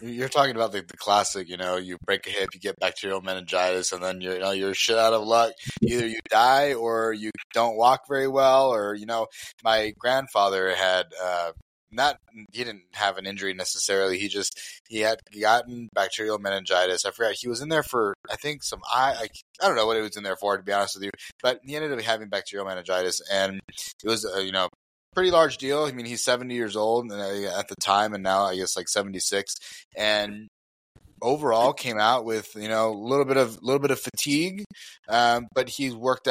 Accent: American